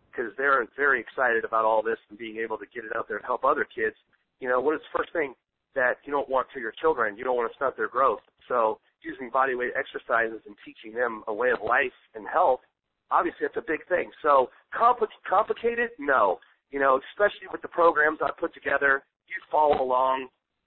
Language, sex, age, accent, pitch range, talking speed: English, male, 40-59, American, 135-210 Hz, 215 wpm